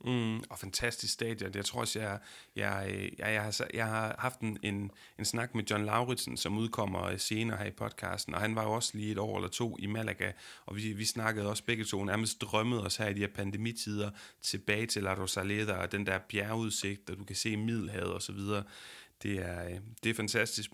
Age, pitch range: 30-49, 105-125 Hz